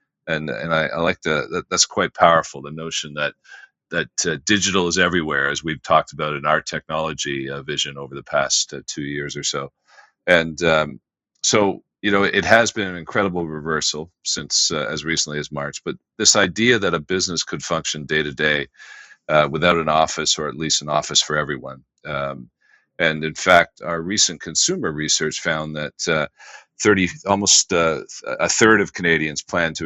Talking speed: 190 wpm